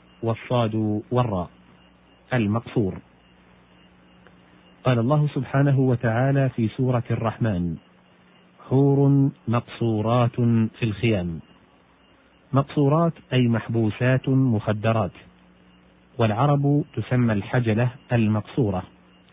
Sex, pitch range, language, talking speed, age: male, 95-125 Hz, Arabic, 70 wpm, 40-59